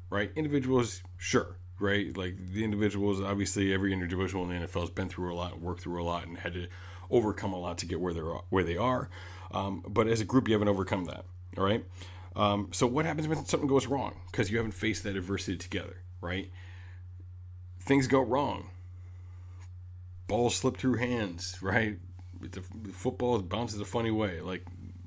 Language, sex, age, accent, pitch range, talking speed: English, male, 30-49, American, 90-105 Hz, 185 wpm